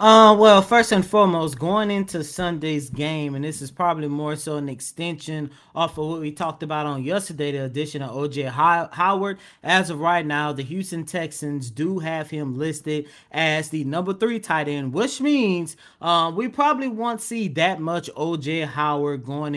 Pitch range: 145-200 Hz